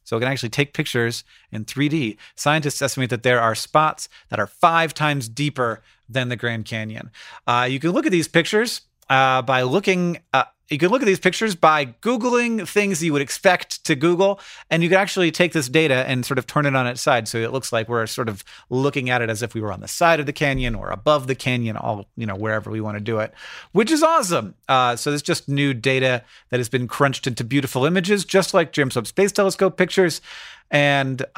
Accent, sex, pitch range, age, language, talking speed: American, male, 120-165 Hz, 40-59, English, 230 wpm